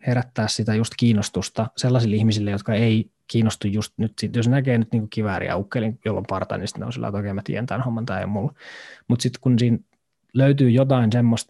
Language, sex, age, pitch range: Finnish, male, 20-39, 110-120 Hz